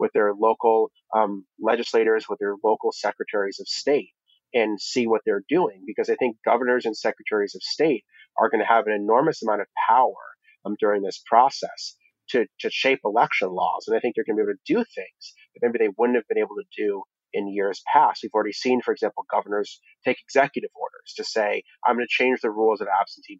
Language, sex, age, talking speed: English, male, 30-49, 215 wpm